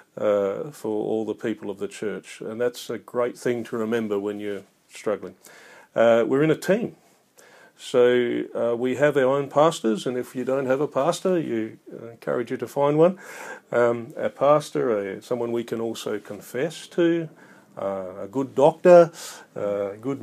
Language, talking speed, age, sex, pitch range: English, 175 wpm, 40-59, male, 110-140 Hz